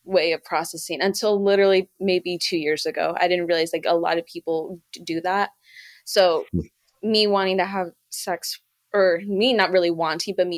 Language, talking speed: English, 180 wpm